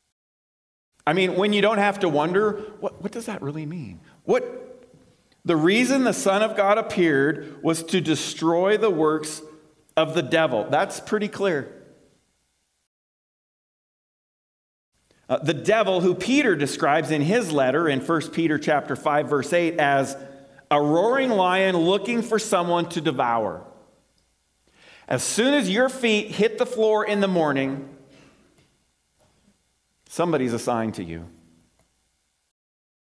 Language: English